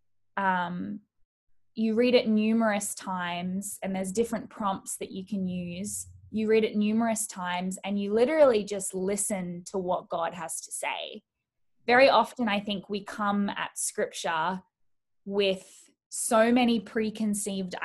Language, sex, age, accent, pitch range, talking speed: English, female, 10-29, Australian, 185-225 Hz, 140 wpm